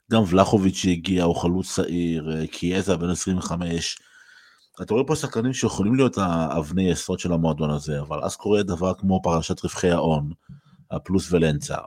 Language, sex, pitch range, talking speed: Hebrew, male, 85-100 Hz, 150 wpm